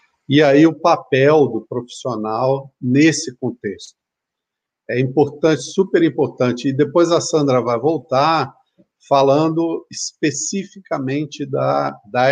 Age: 50-69